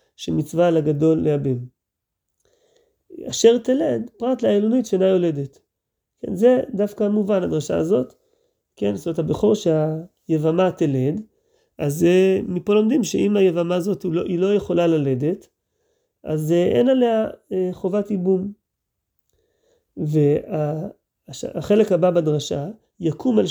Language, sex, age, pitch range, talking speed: Hebrew, male, 30-49, 160-225 Hz, 105 wpm